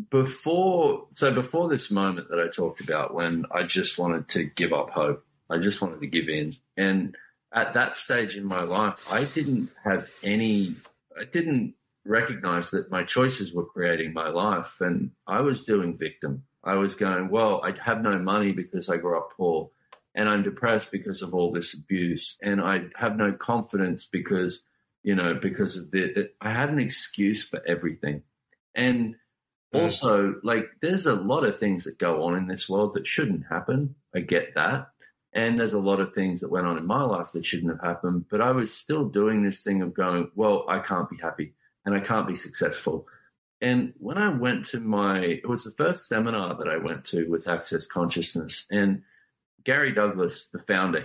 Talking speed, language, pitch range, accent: 195 wpm, English, 85-115 Hz, Australian